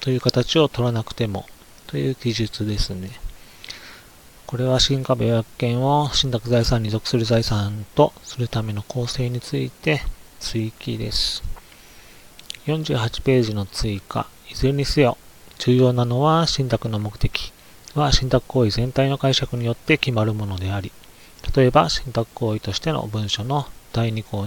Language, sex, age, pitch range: Japanese, male, 40-59, 105-135 Hz